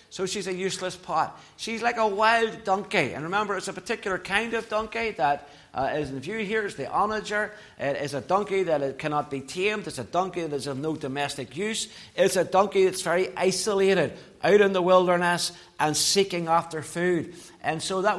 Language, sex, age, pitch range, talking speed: English, male, 60-79, 145-195 Hz, 200 wpm